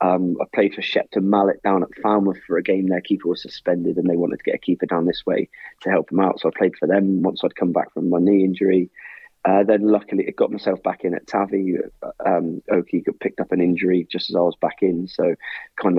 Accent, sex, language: British, male, English